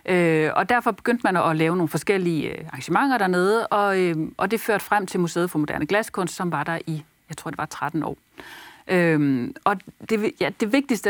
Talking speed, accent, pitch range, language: 205 wpm, native, 165-225 Hz, Danish